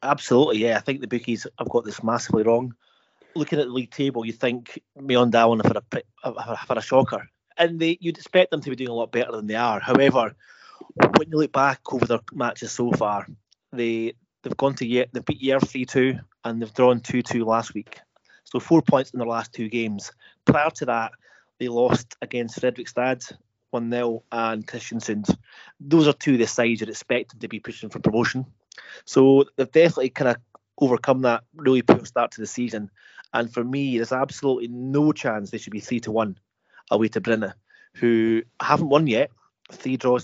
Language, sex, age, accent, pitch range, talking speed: English, male, 30-49, British, 115-130 Hz, 195 wpm